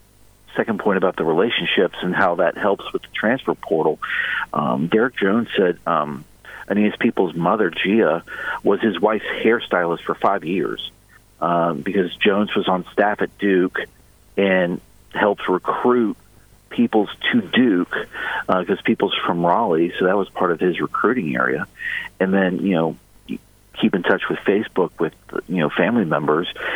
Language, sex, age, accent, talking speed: English, male, 50-69, American, 160 wpm